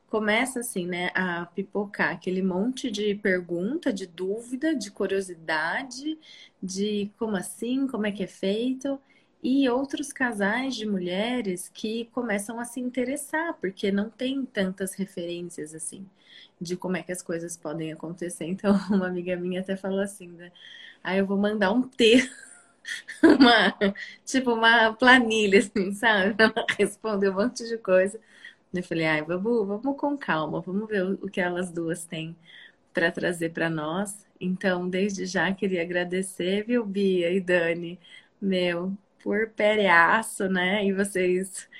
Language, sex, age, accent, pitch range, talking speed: Portuguese, female, 20-39, Brazilian, 180-220 Hz, 150 wpm